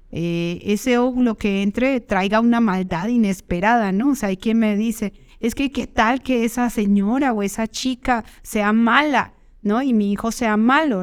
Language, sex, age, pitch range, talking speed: Spanish, female, 40-59, 195-240 Hz, 185 wpm